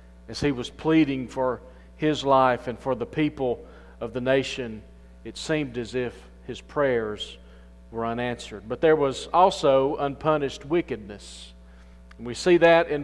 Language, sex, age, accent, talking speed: English, male, 40-59, American, 150 wpm